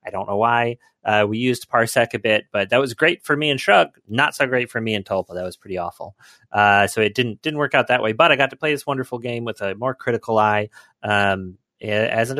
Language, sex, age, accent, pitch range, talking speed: English, male, 30-49, American, 110-140 Hz, 260 wpm